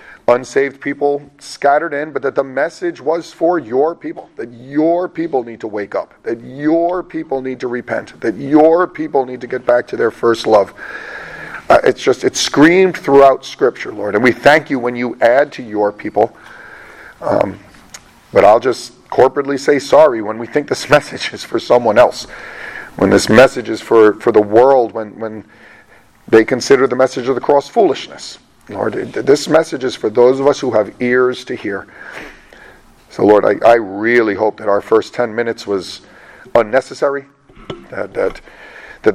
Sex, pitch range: male, 115-140 Hz